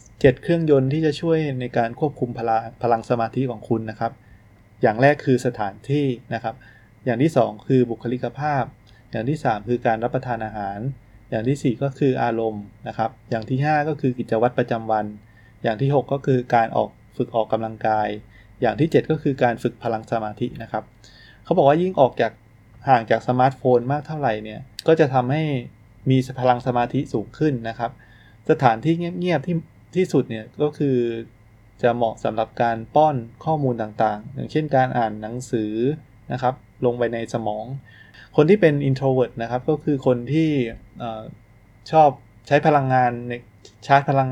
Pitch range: 110-135 Hz